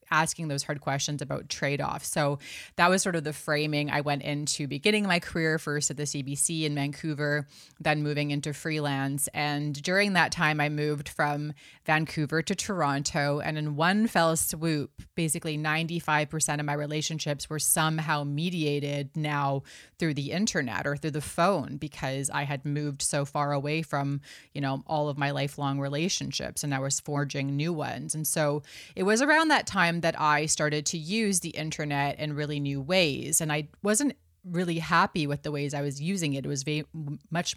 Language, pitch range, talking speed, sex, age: English, 145-165 Hz, 185 wpm, female, 20-39